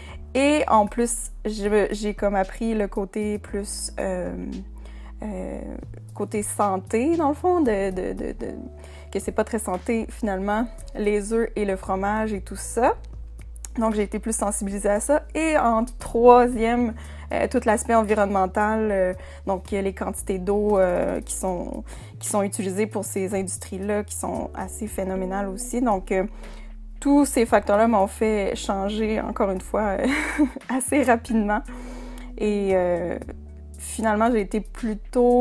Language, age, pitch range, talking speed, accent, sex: French, 20-39, 195-230 Hz, 150 wpm, Canadian, female